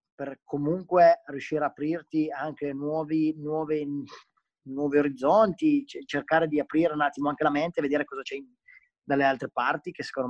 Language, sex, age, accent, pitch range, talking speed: Italian, male, 20-39, native, 135-170 Hz, 145 wpm